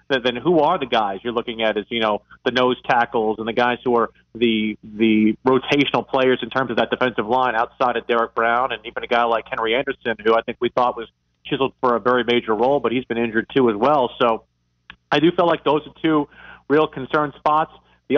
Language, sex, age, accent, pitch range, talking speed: English, male, 40-59, American, 120-155 Hz, 235 wpm